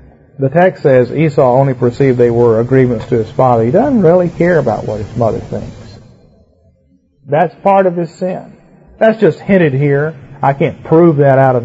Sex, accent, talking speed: male, American, 185 wpm